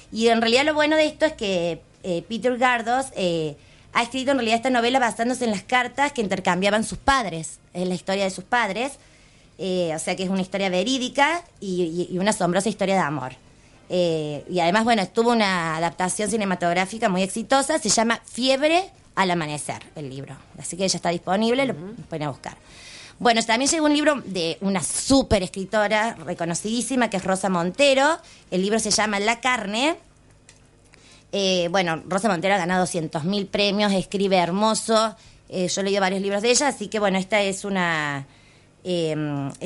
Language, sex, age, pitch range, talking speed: Spanish, female, 20-39, 170-230 Hz, 180 wpm